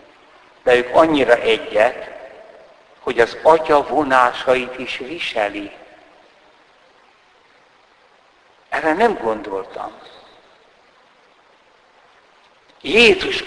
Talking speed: 60 wpm